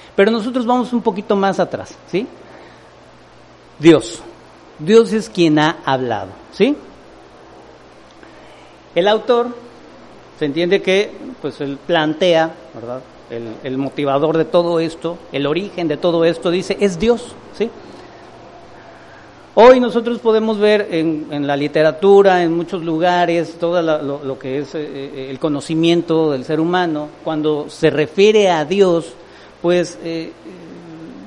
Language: English